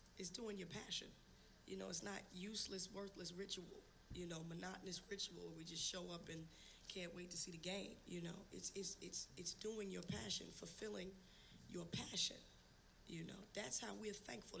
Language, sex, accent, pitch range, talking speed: English, female, American, 170-195 Hz, 185 wpm